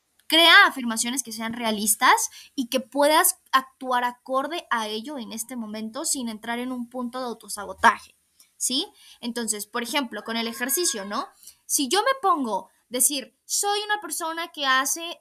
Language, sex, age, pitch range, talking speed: Spanish, female, 10-29, 235-300 Hz, 160 wpm